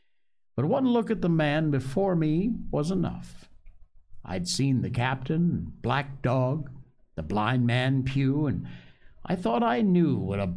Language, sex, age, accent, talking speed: English, male, 60-79, American, 155 wpm